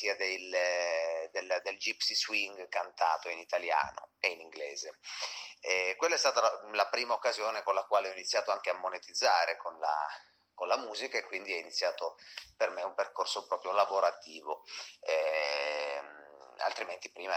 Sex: male